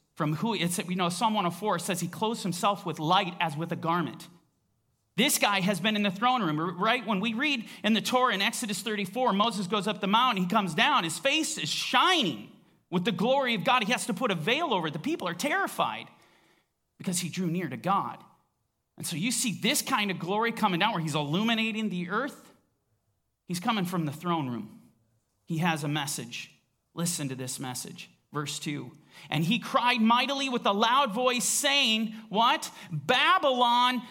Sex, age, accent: male, 40-59, American